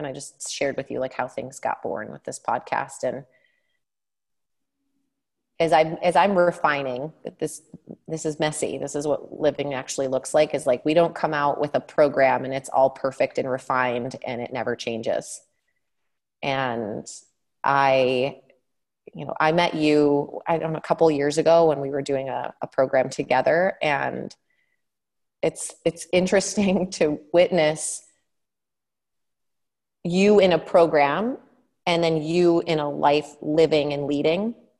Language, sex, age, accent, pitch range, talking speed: English, female, 30-49, American, 145-175 Hz, 160 wpm